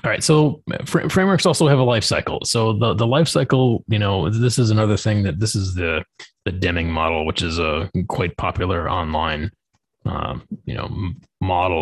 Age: 20-39